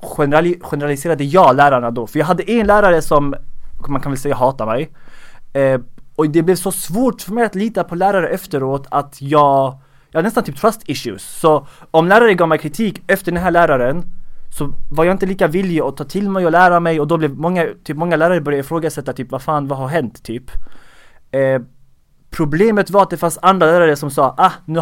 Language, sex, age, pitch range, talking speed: English, male, 20-39, 135-175 Hz, 215 wpm